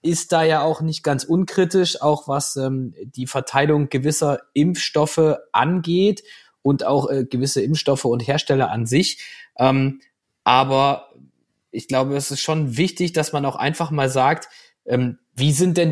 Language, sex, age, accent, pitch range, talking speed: German, male, 20-39, German, 135-165 Hz, 160 wpm